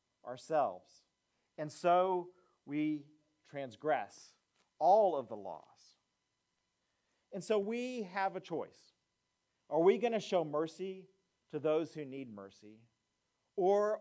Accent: American